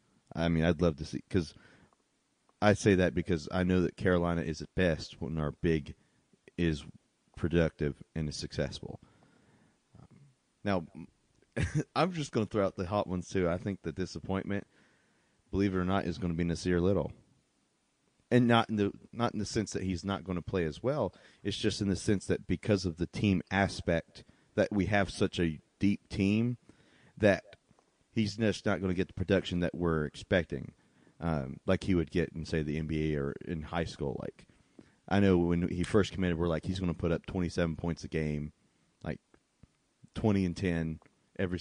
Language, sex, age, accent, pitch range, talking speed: English, male, 30-49, American, 80-100 Hz, 190 wpm